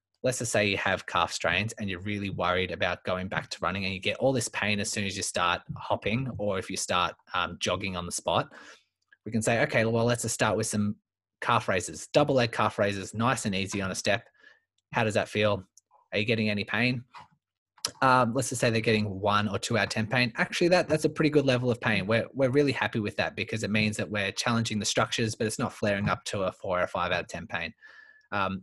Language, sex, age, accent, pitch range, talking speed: English, male, 20-39, Australian, 95-115 Hz, 250 wpm